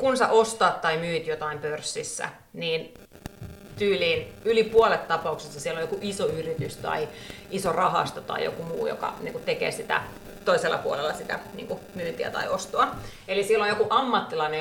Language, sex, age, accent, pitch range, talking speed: Finnish, female, 30-49, native, 160-230 Hz, 150 wpm